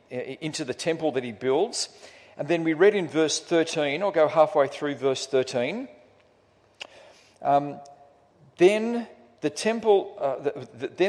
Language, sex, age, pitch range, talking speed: English, male, 50-69, 145-215 Hz, 135 wpm